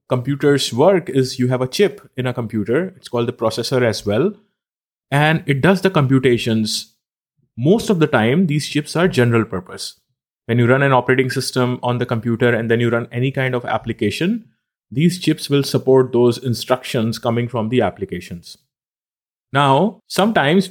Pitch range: 120-170 Hz